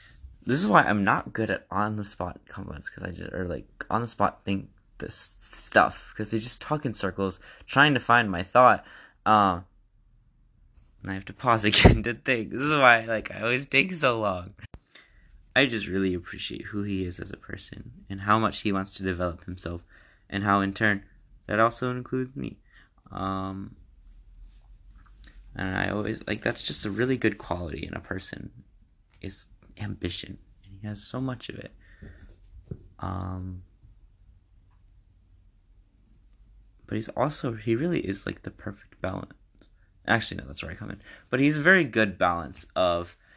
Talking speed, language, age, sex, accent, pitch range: 175 wpm, English, 20-39, male, American, 95-110 Hz